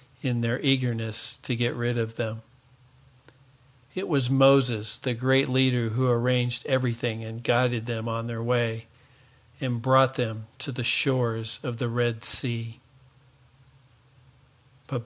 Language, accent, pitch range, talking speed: English, American, 120-130 Hz, 135 wpm